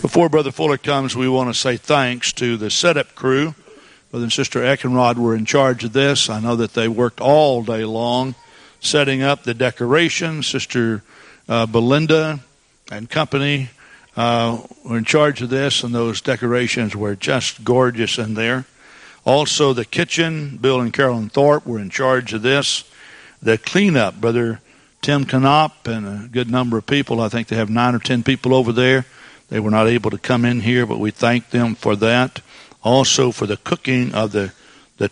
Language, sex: English, male